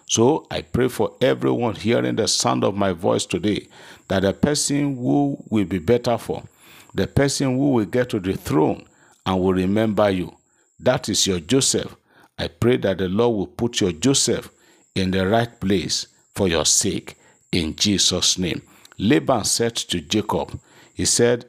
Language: English